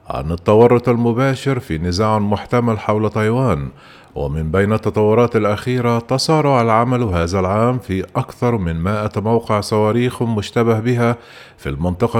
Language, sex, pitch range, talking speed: Arabic, male, 95-120 Hz, 130 wpm